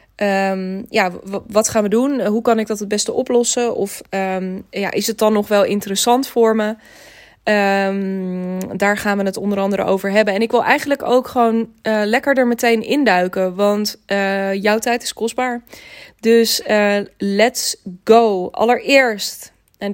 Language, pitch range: Dutch, 200-235 Hz